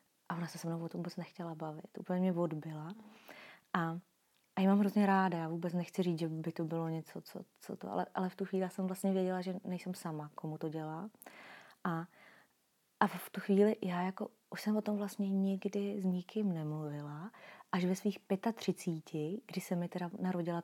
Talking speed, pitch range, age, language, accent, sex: 205 wpm, 170-200 Hz, 30-49, Czech, native, female